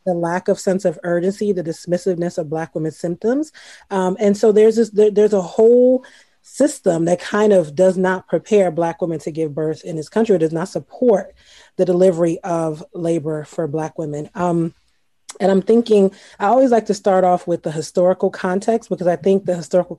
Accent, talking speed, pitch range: American, 200 wpm, 165-190 Hz